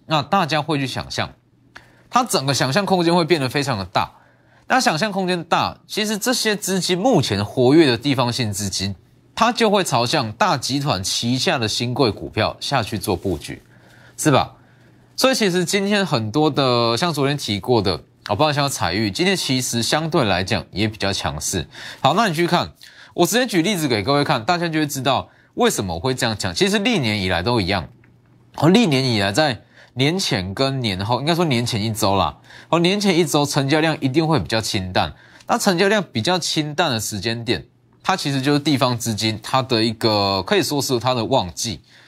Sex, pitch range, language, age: male, 115-180 Hz, Chinese, 20-39